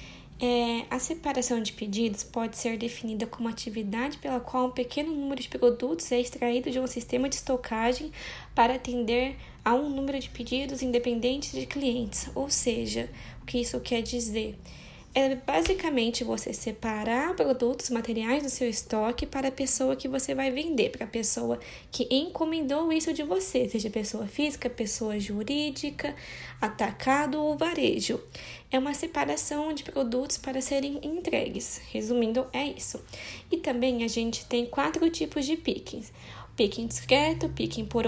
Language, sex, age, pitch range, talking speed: Portuguese, female, 10-29, 225-275 Hz, 150 wpm